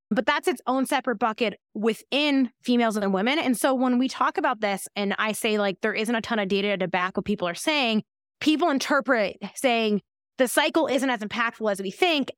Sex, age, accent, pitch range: female, 20-39, American, 200-255 Hz